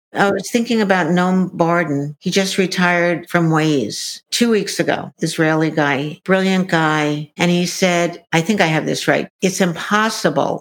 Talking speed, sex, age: 165 wpm, female, 60-79